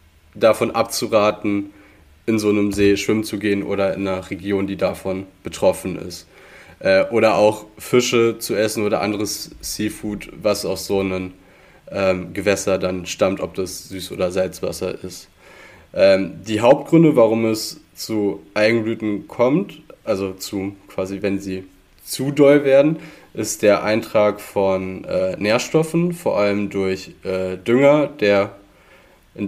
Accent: German